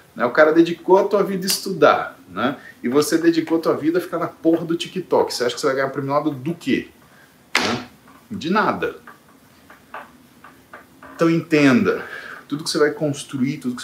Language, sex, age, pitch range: Portuguese, male, 40-59, 140-170 Hz